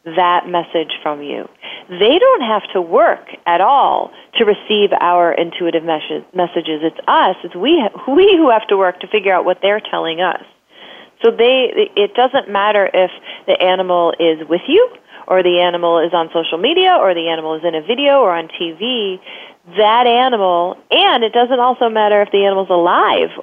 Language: English